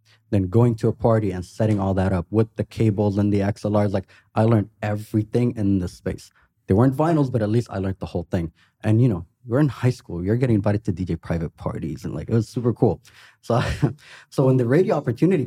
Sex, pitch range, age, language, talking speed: male, 100-125 Hz, 20-39, English, 235 wpm